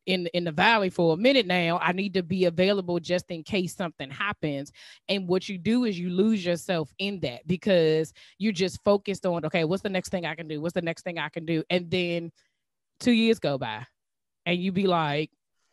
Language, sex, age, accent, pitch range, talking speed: English, female, 20-39, American, 170-225 Hz, 220 wpm